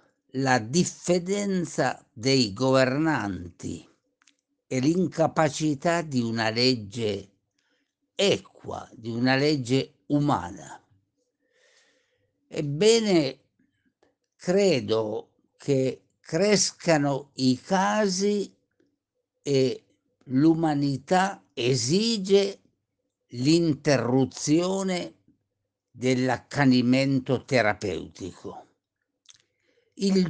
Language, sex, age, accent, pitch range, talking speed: Italian, male, 60-79, native, 120-165 Hz, 55 wpm